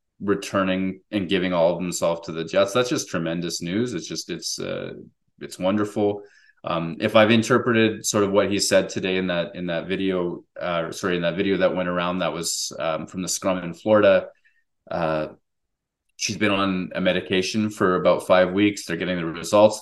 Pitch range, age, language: 95-110 Hz, 20-39, English